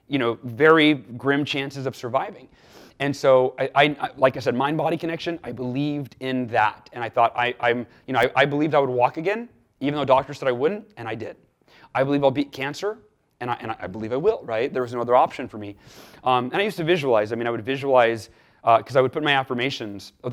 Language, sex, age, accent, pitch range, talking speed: English, male, 30-49, American, 125-150 Hz, 250 wpm